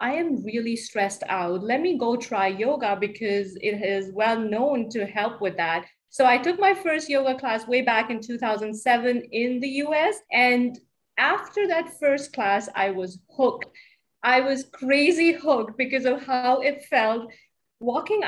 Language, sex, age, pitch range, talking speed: English, female, 30-49, 225-275 Hz, 165 wpm